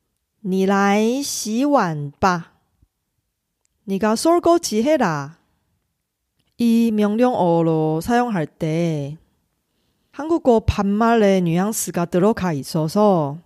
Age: 30-49